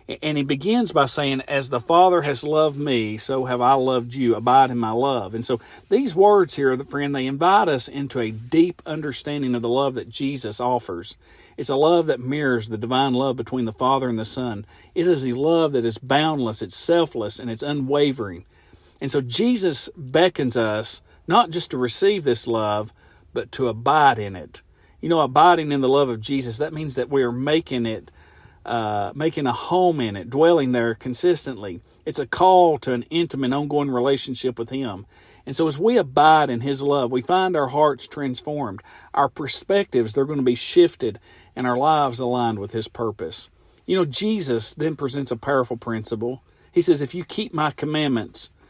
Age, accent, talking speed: 40-59, American, 195 wpm